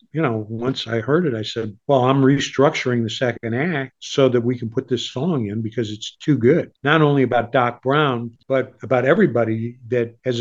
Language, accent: English, American